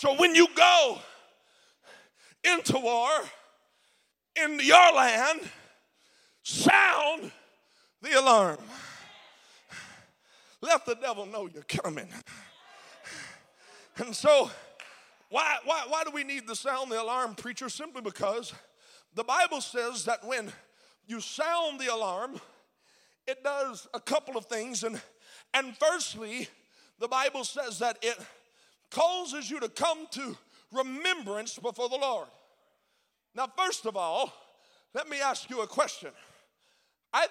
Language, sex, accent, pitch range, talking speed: English, male, American, 235-325 Hz, 120 wpm